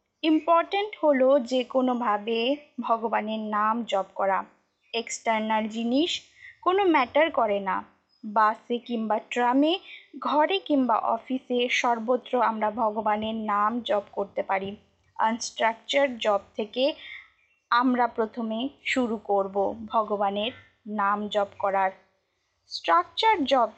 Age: 20-39